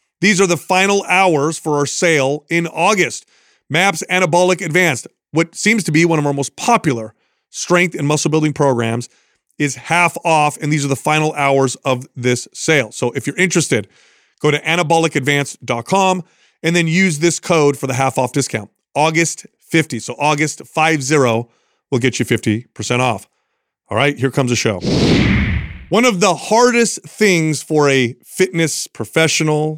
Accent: American